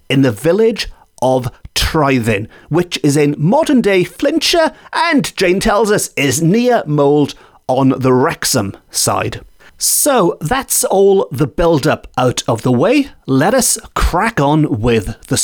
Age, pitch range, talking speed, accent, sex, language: 40-59, 125-180 Hz, 140 wpm, British, male, English